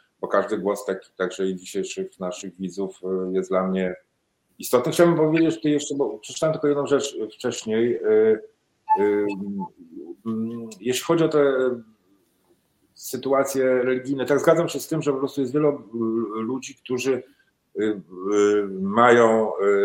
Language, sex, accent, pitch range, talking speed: Polish, male, native, 100-140 Hz, 125 wpm